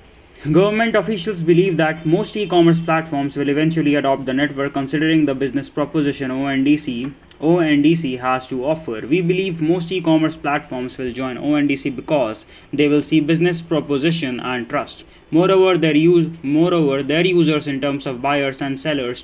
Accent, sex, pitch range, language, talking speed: Indian, male, 140-170 Hz, English, 155 wpm